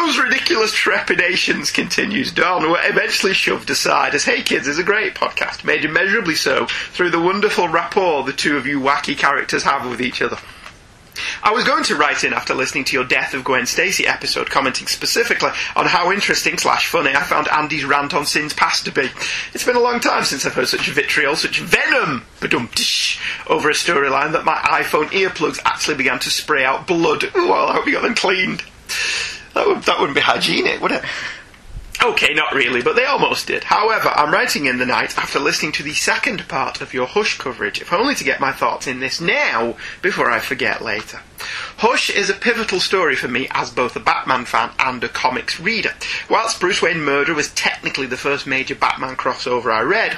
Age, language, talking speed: 30-49, English, 200 wpm